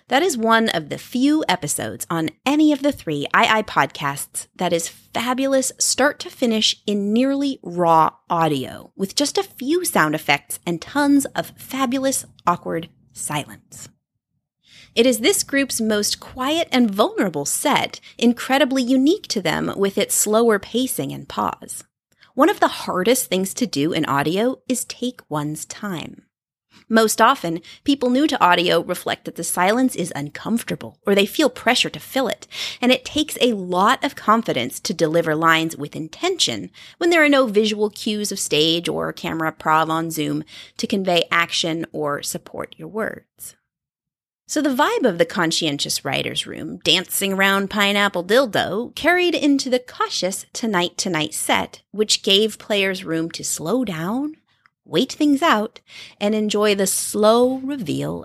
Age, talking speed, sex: 30-49, 160 wpm, female